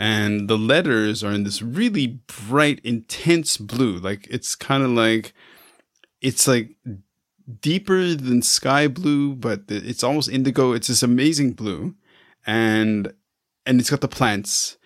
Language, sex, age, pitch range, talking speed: English, male, 30-49, 105-125 Hz, 140 wpm